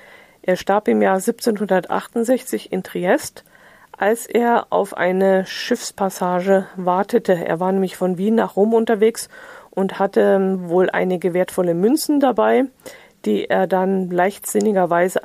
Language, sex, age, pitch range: German, female, 40-59, 185-225 Hz